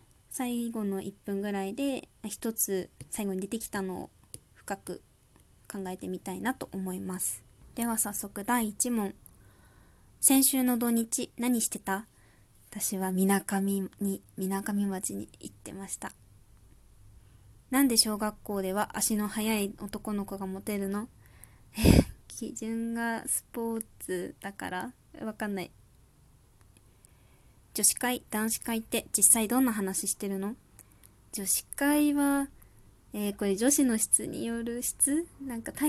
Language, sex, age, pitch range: Japanese, female, 20-39, 190-230 Hz